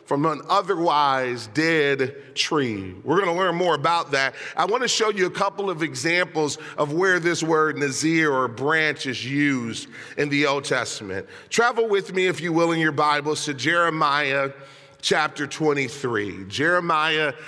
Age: 40-59